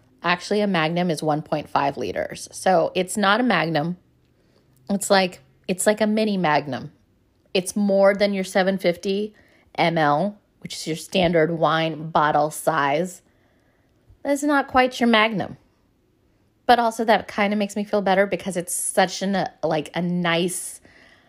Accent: American